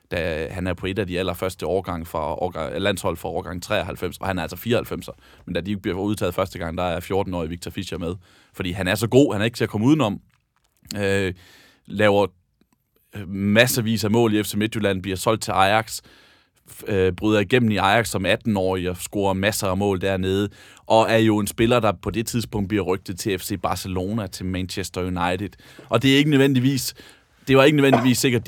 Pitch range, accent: 90-110 Hz, native